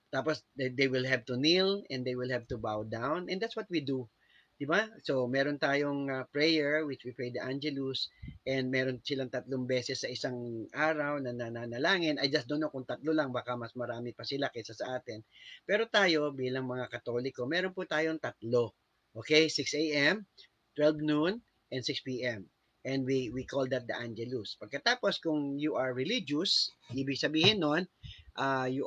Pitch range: 125-150 Hz